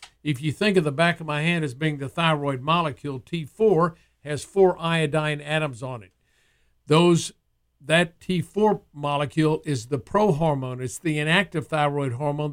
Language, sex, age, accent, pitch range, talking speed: English, male, 50-69, American, 140-170 Hz, 160 wpm